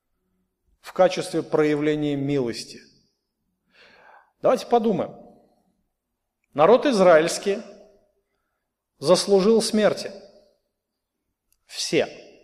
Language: Russian